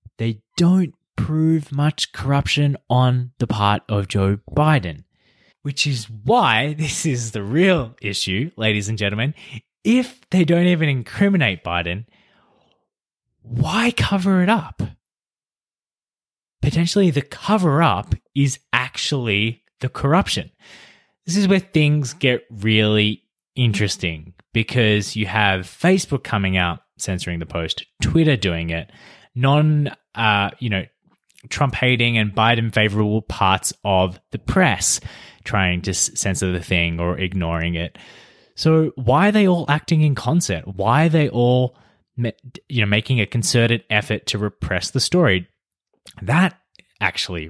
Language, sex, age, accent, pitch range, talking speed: English, male, 20-39, Australian, 100-145 Hz, 130 wpm